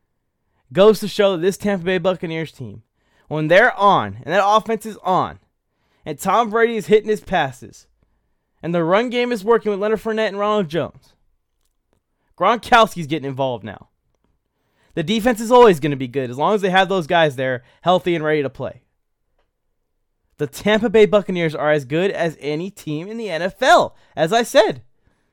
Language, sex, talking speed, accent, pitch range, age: English, male, 180 wpm, American, 140-205 Hz, 20-39